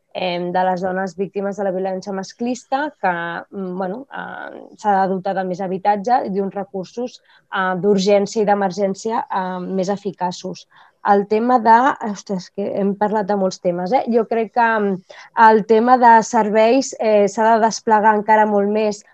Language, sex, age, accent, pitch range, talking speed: Spanish, female, 20-39, Spanish, 195-220 Hz, 150 wpm